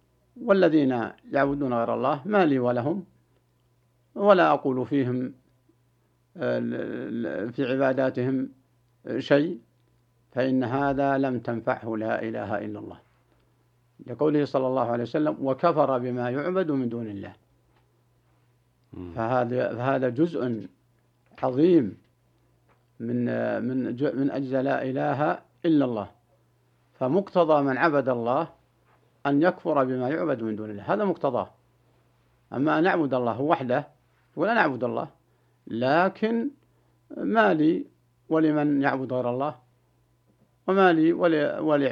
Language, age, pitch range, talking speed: Arabic, 60-79, 120-140 Hz, 105 wpm